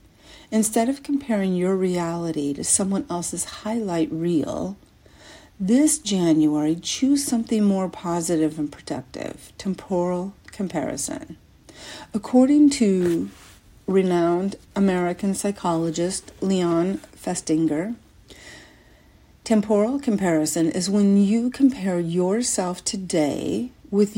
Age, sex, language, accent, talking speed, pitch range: 50-69, female, English, American, 90 wpm, 160-205 Hz